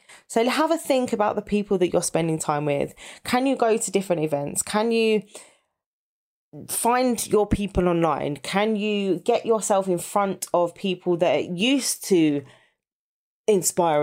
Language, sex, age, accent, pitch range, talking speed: English, female, 20-39, British, 165-220 Hz, 155 wpm